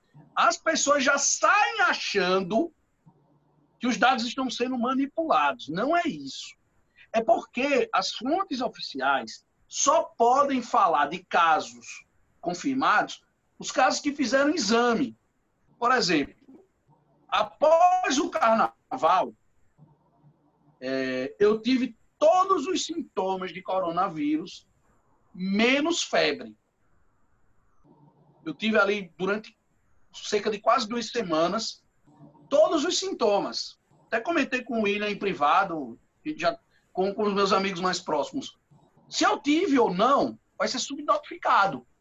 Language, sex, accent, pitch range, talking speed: English, male, Brazilian, 195-295 Hz, 115 wpm